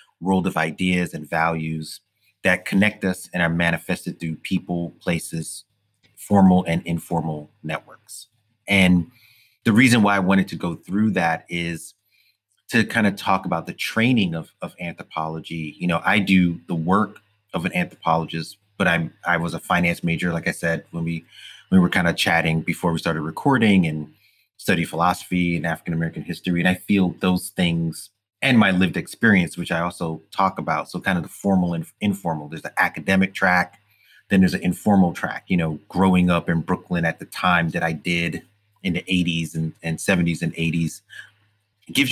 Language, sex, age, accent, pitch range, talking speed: English, male, 30-49, American, 85-105 Hz, 180 wpm